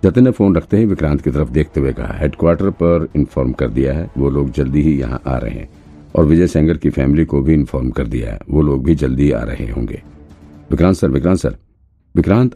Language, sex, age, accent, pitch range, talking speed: Hindi, male, 50-69, native, 70-85 Hz, 230 wpm